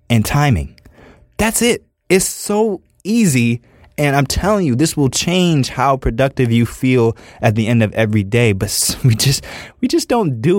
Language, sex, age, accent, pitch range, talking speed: English, male, 20-39, American, 105-165 Hz, 175 wpm